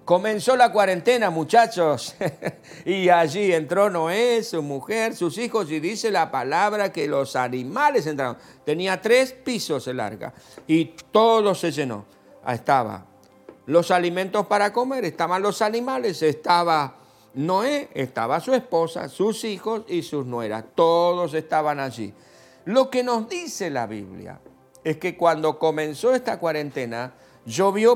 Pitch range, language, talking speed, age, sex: 145-215 Hz, Spanish, 135 wpm, 50-69, male